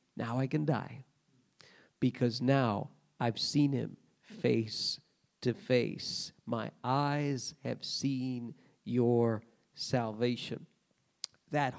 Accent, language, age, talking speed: American, English, 50-69, 95 wpm